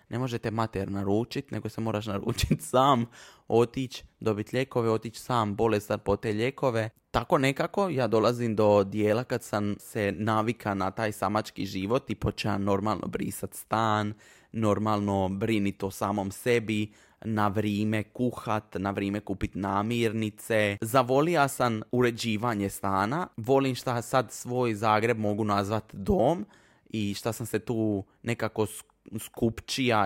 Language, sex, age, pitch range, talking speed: Croatian, male, 20-39, 100-120 Hz, 140 wpm